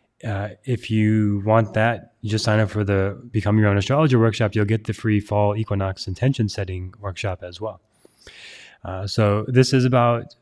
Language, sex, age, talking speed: English, male, 20-39, 185 wpm